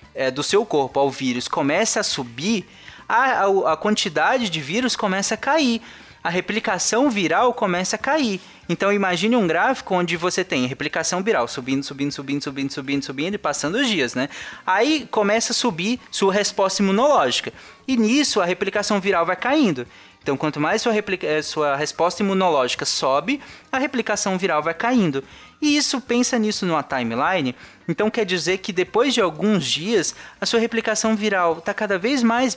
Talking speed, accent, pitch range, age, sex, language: 175 wpm, Brazilian, 165-225 Hz, 20-39, male, Portuguese